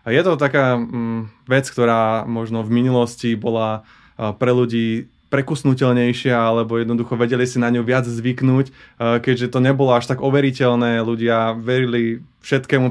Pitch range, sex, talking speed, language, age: 115-130 Hz, male, 135 wpm, Slovak, 20-39